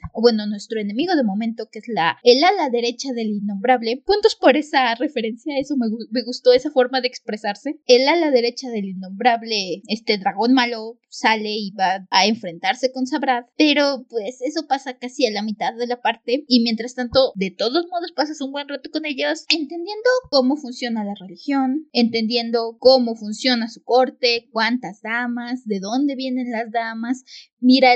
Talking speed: 180 wpm